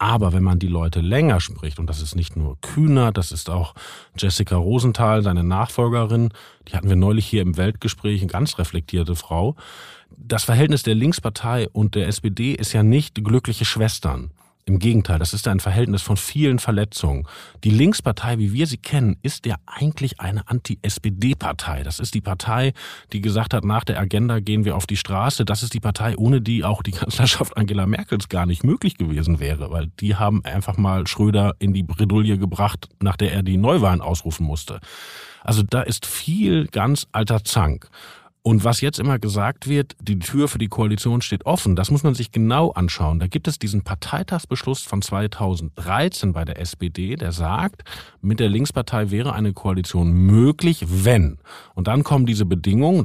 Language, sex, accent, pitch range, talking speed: German, male, German, 95-125 Hz, 185 wpm